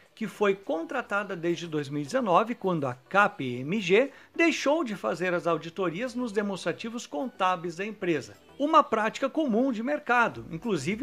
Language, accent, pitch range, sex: Portuguese, Brazilian, 170-245 Hz, male